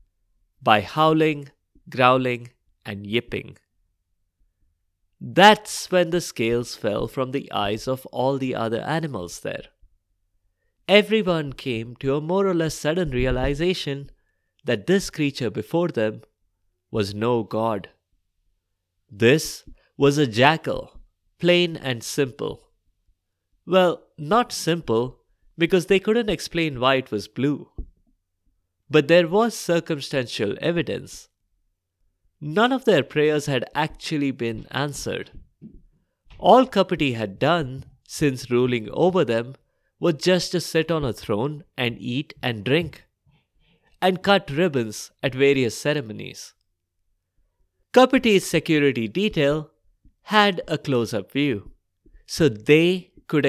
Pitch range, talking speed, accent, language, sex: 105-165 Hz, 115 wpm, Indian, English, male